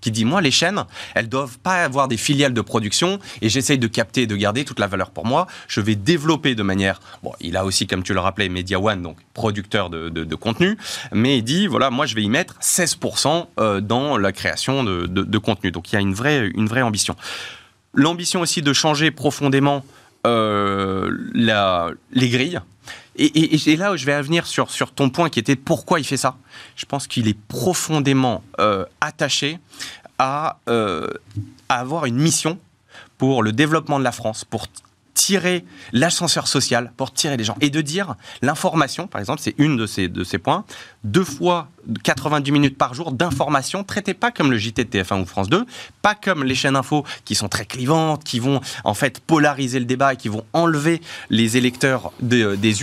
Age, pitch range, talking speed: 20-39, 110-155 Hz, 205 wpm